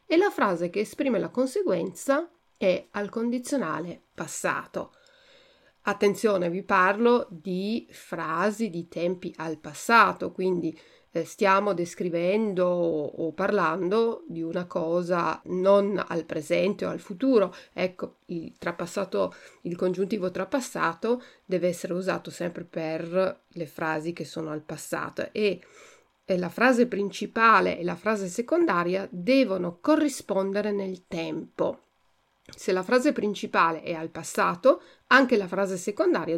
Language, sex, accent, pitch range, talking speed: Italian, female, native, 175-245 Hz, 120 wpm